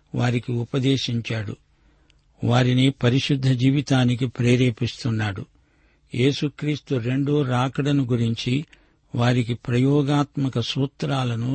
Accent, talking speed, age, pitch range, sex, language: native, 70 wpm, 50-69, 120-140 Hz, male, Telugu